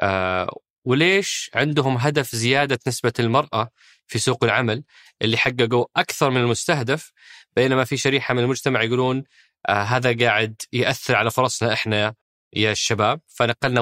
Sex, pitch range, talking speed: male, 115-140 Hz, 135 wpm